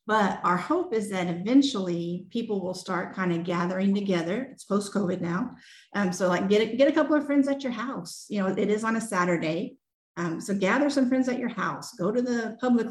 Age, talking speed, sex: 40-59, 225 wpm, female